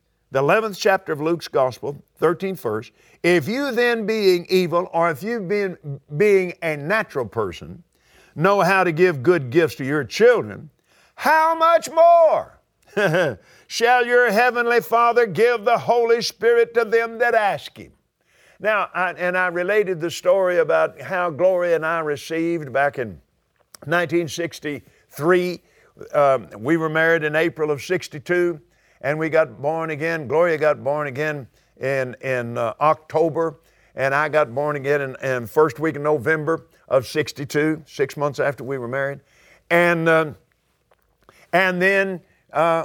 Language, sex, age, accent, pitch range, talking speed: English, male, 50-69, American, 145-185 Hz, 145 wpm